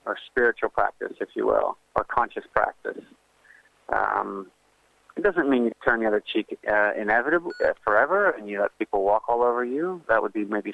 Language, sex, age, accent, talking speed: English, male, 40-59, American, 190 wpm